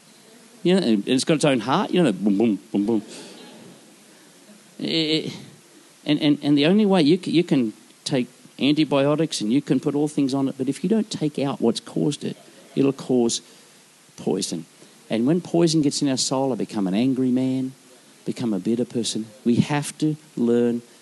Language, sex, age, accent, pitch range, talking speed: English, male, 50-69, Australian, 120-175 Hz, 190 wpm